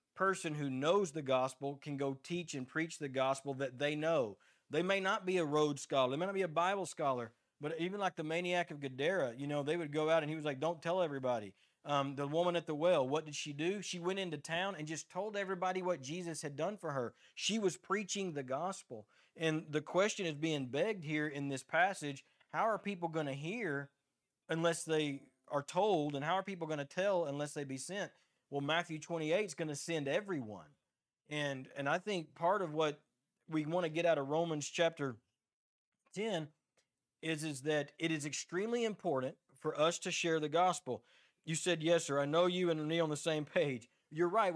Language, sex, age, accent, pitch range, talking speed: English, male, 40-59, American, 145-175 Hz, 215 wpm